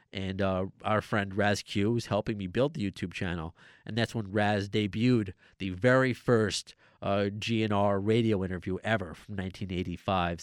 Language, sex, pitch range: English, male, 105-140 Hz